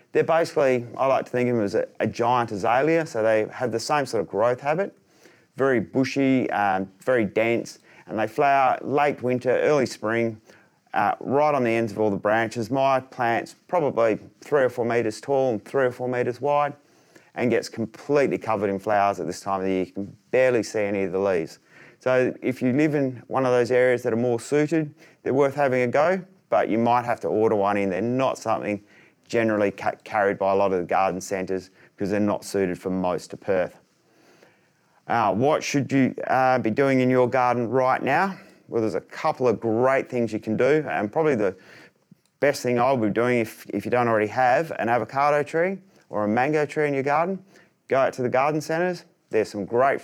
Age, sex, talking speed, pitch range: 30-49, male, 215 wpm, 110-140 Hz